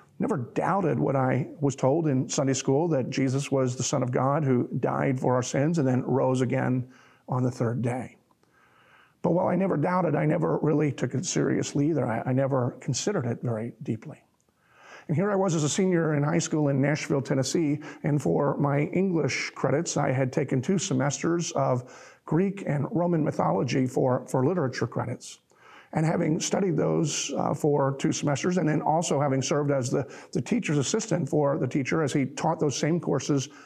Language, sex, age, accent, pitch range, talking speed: English, male, 50-69, American, 130-160 Hz, 190 wpm